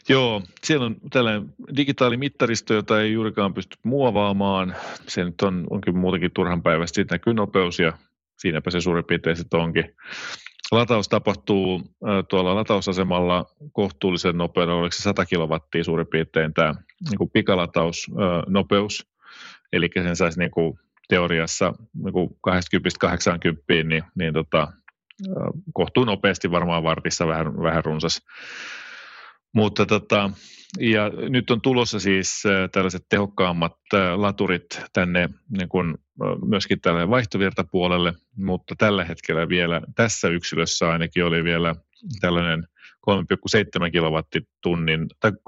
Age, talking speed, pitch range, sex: 30-49, 115 wpm, 85-105 Hz, male